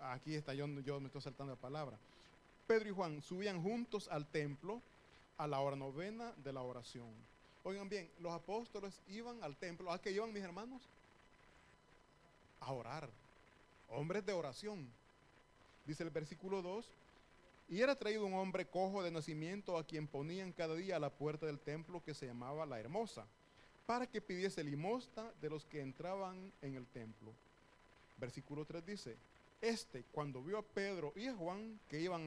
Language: Italian